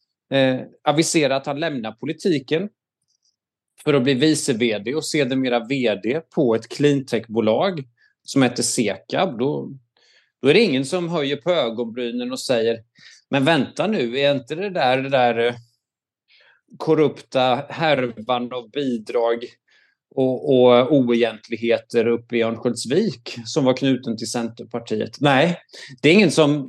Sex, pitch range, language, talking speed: male, 120-155 Hz, Swedish, 135 wpm